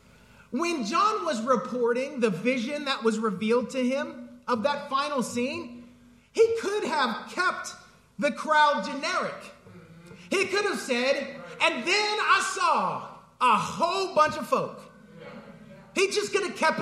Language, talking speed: English, 145 wpm